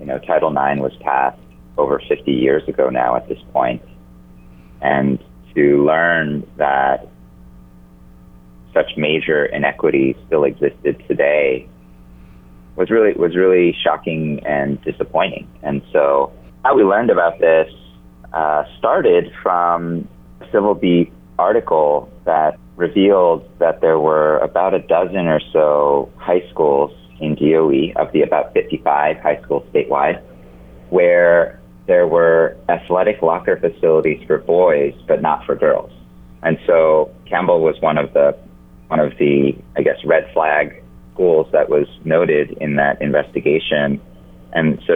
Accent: American